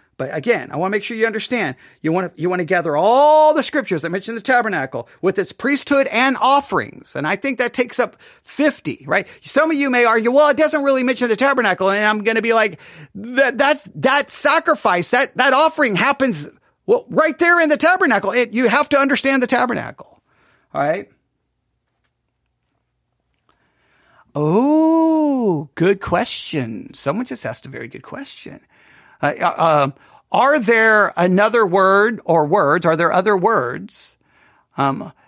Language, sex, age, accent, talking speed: English, male, 40-59, American, 170 wpm